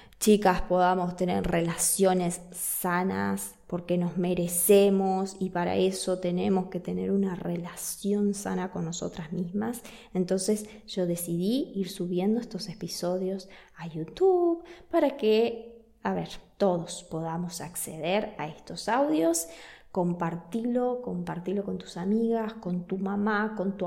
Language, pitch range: Spanish, 180-230 Hz